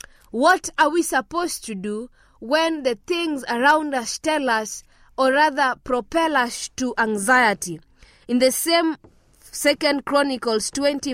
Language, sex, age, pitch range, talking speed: English, female, 20-39, 230-305 Hz, 135 wpm